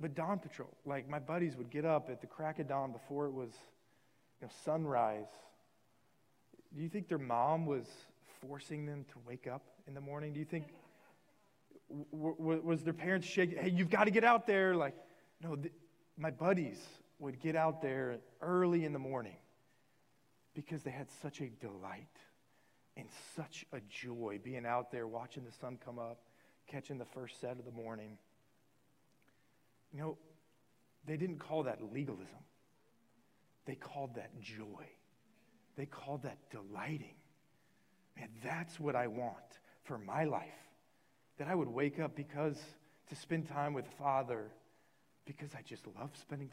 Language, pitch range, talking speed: English, 125-165 Hz, 155 wpm